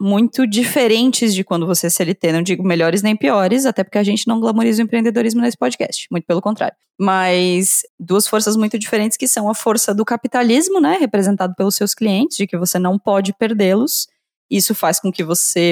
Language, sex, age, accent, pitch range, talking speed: Portuguese, female, 20-39, Brazilian, 175-225 Hz, 195 wpm